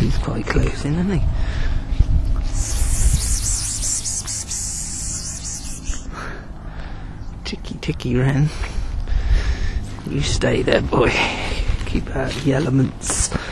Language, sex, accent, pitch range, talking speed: English, male, British, 95-130 Hz, 70 wpm